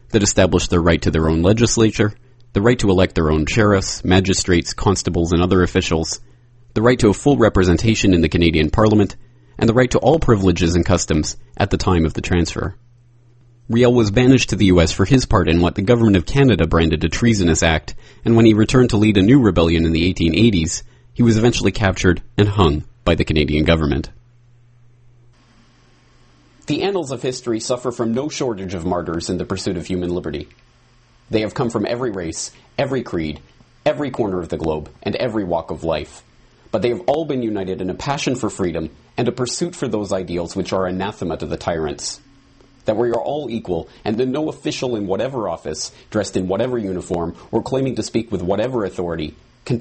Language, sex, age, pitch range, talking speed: English, male, 30-49, 85-120 Hz, 200 wpm